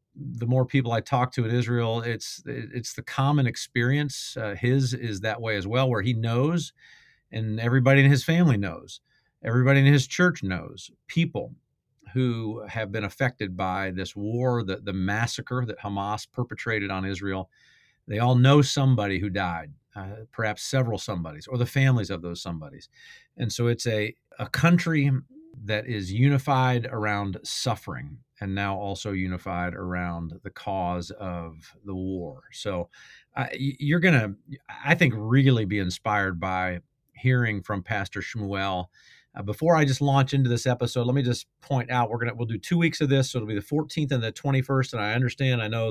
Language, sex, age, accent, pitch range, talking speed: English, male, 40-59, American, 100-135 Hz, 180 wpm